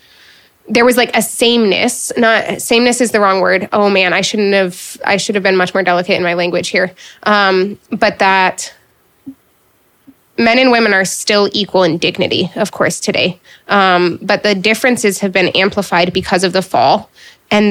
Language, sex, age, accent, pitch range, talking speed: English, female, 20-39, American, 195-225 Hz, 180 wpm